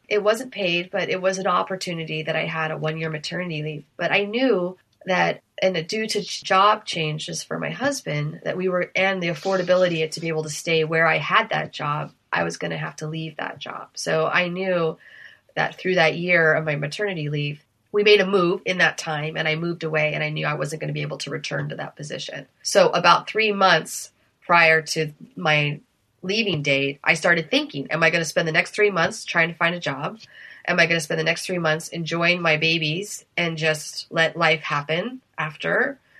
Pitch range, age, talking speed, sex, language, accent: 155-190 Hz, 30-49, 220 wpm, female, English, American